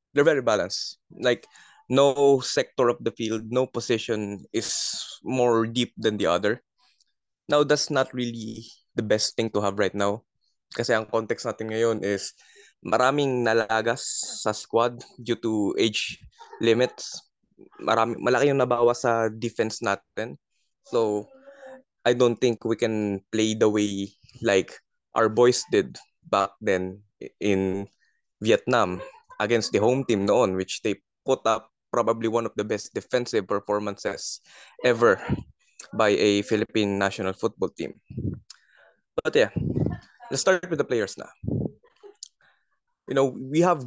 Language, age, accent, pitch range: Filipino, 20-39, native, 105-125 Hz